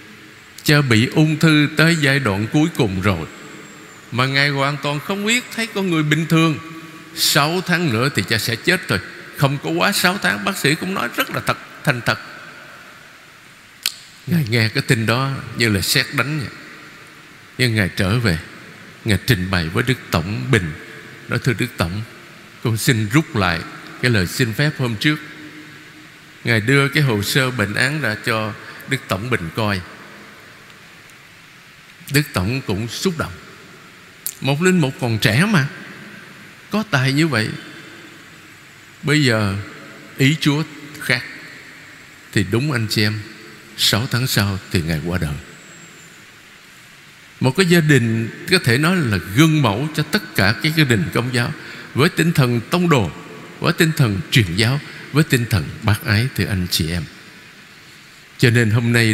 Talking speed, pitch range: 165 wpm, 110-155 Hz